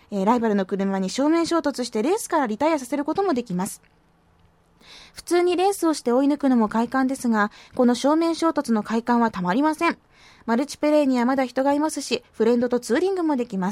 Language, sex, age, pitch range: Japanese, female, 20-39, 220-300 Hz